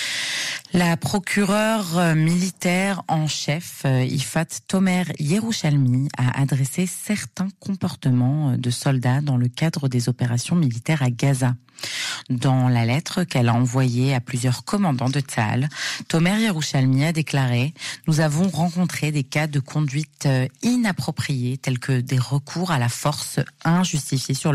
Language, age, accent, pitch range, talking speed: Hebrew, 30-49, French, 125-160 Hz, 135 wpm